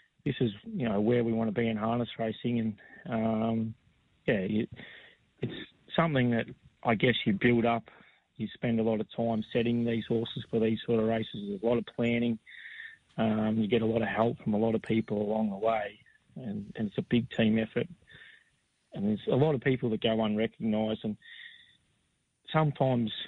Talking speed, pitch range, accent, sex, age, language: 195 wpm, 110-120 Hz, Australian, male, 30-49, English